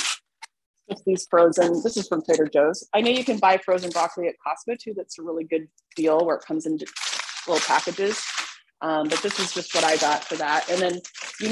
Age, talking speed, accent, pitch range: 30-49, 215 wpm, American, 165-220 Hz